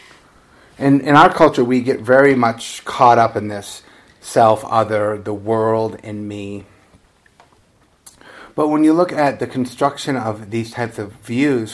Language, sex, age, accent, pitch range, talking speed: English, male, 30-49, American, 105-125 Hz, 155 wpm